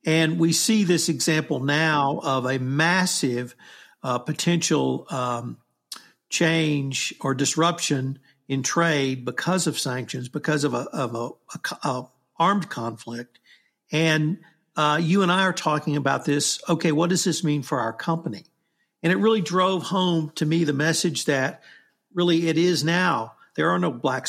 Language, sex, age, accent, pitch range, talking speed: English, male, 50-69, American, 140-170 Hz, 160 wpm